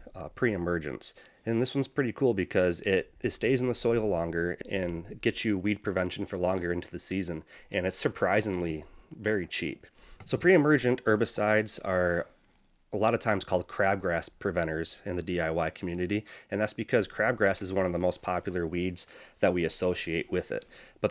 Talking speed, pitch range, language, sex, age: 175 wpm, 90-110 Hz, English, male, 30-49